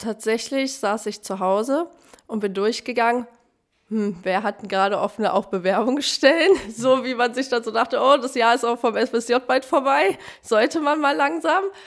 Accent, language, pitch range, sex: German, German, 200-255 Hz, female